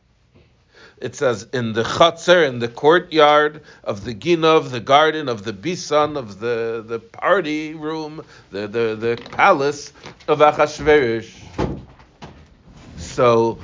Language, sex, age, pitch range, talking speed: English, male, 60-79, 120-165 Hz, 125 wpm